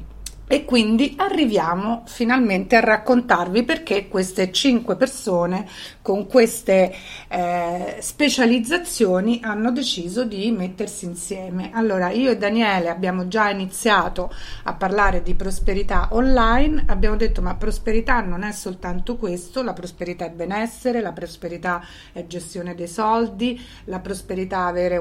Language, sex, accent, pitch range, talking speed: Italian, female, native, 180-245 Hz, 125 wpm